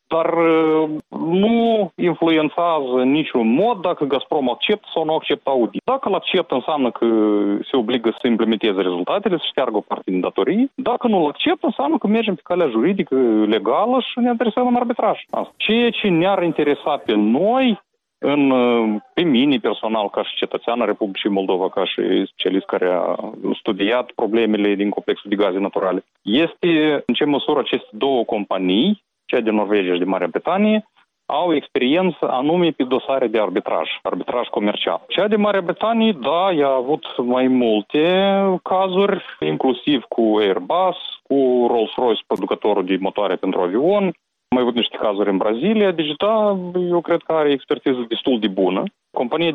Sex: male